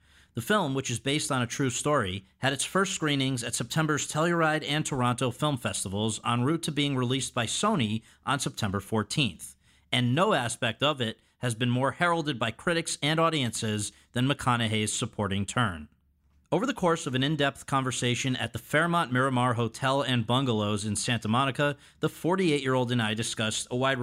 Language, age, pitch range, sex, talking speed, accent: English, 40-59, 115-150 Hz, male, 175 wpm, American